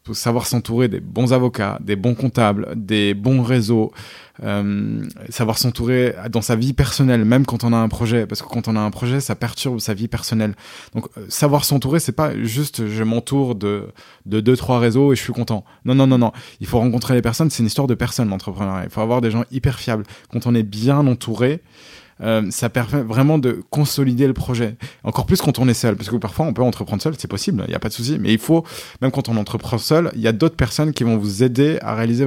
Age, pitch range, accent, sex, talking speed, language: 20-39, 110-135 Hz, French, male, 240 wpm, French